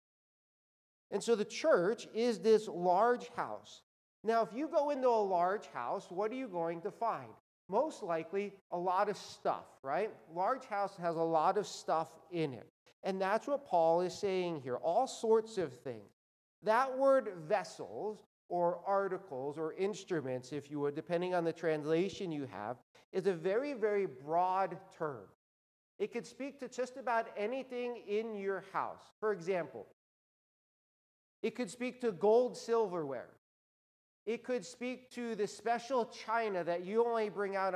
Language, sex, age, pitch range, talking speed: English, male, 50-69, 175-230 Hz, 160 wpm